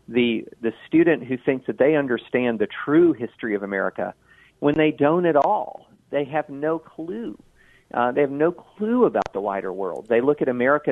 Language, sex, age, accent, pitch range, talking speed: English, male, 40-59, American, 110-155 Hz, 190 wpm